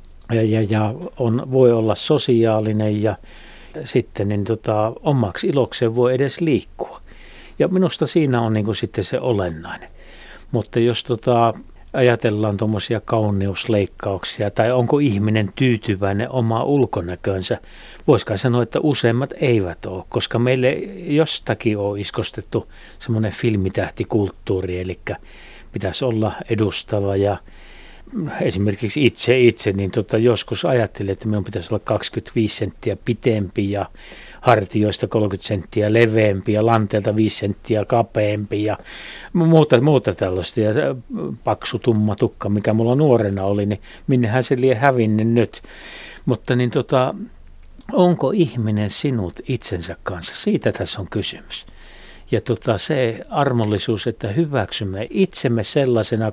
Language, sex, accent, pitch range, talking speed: Finnish, male, native, 105-125 Hz, 125 wpm